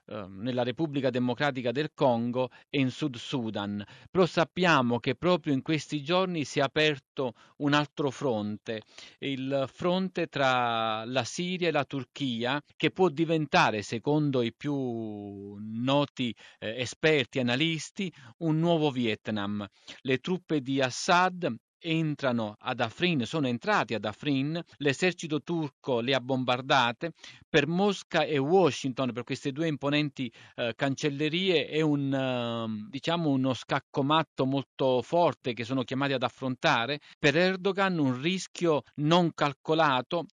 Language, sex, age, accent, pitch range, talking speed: Italian, male, 40-59, native, 125-160 Hz, 130 wpm